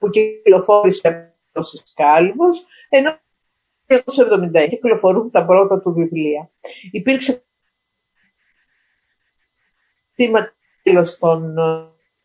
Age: 50-69